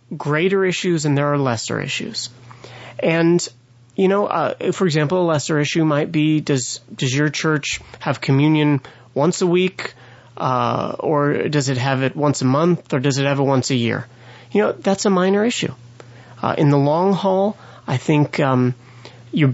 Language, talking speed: English, 180 wpm